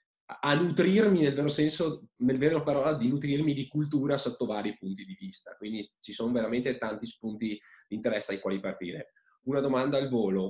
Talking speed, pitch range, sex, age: 185 wpm, 105-140 Hz, male, 20-39